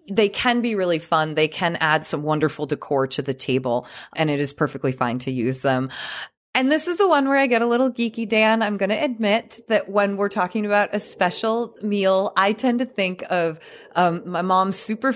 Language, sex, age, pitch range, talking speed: English, female, 20-39, 160-215 Hz, 220 wpm